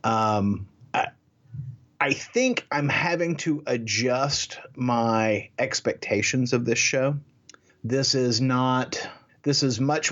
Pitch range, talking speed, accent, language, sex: 110-130 Hz, 115 wpm, American, English, male